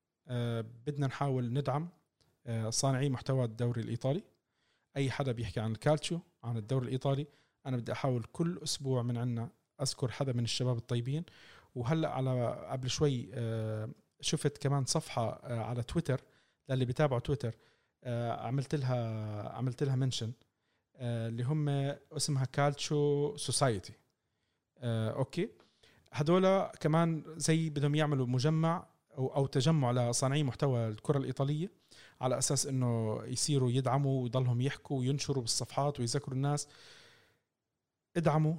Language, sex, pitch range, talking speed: Arabic, male, 120-145 Hz, 130 wpm